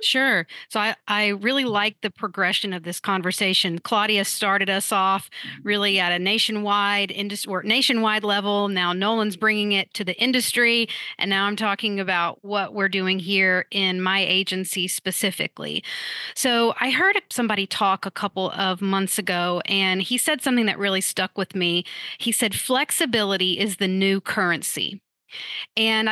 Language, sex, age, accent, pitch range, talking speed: English, female, 40-59, American, 190-220 Hz, 155 wpm